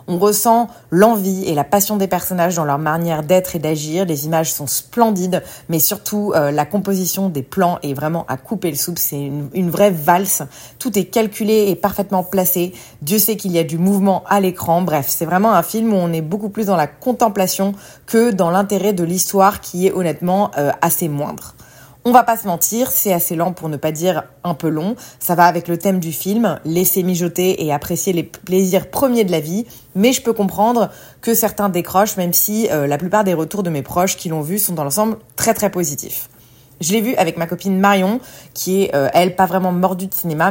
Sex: female